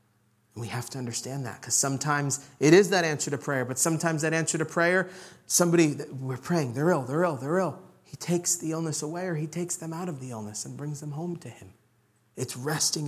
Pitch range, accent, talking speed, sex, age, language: 125-175 Hz, American, 225 wpm, male, 40-59, English